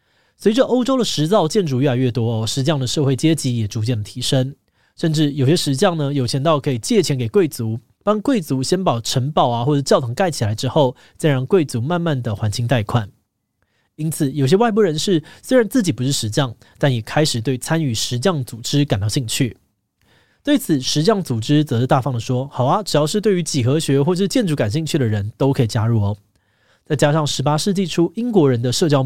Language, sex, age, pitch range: Chinese, male, 20-39, 120-160 Hz